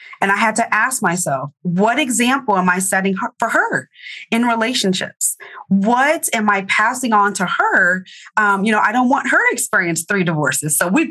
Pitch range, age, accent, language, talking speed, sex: 180-245 Hz, 30-49, American, English, 190 wpm, female